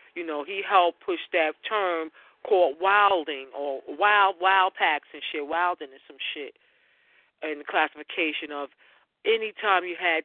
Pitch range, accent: 155-195 Hz, American